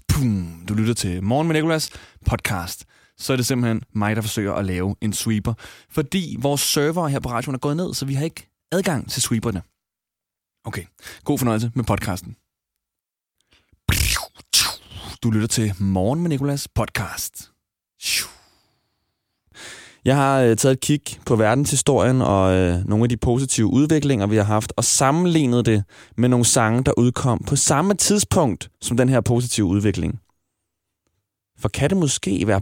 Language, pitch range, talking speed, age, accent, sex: Danish, 100-135 Hz, 150 wpm, 20-39, native, male